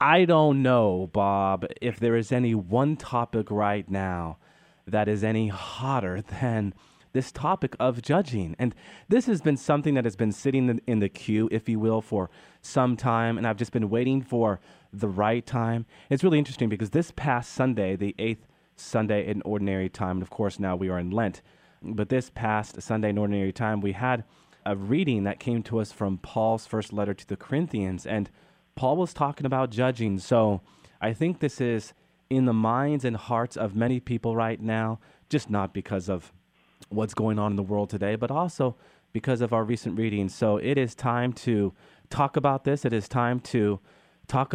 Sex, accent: male, American